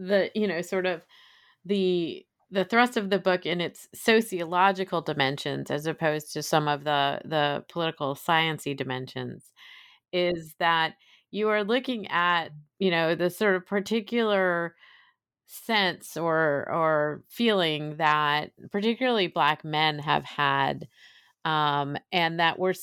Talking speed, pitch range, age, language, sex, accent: 135 wpm, 150-180 Hz, 30-49, English, female, American